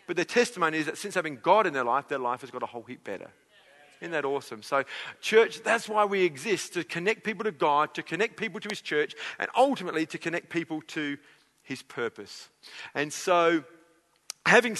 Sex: male